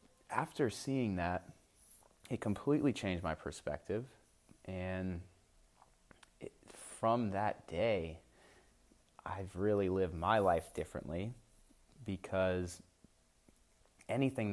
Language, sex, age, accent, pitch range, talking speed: English, male, 30-49, American, 85-100 Hz, 85 wpm